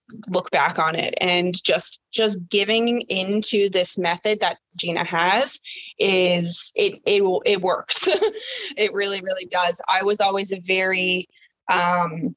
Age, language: 20-39, English